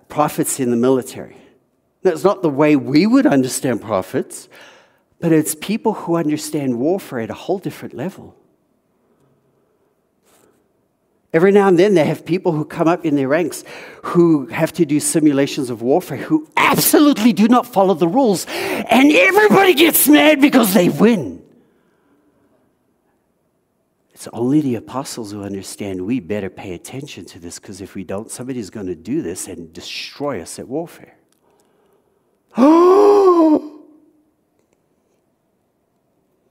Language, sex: English, male